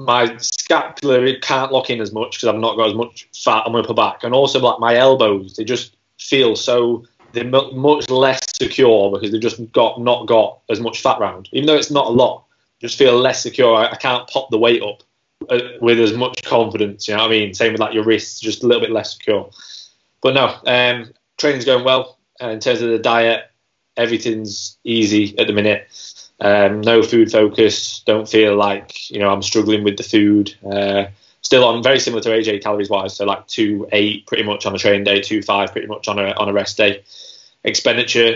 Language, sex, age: English, male, 20-39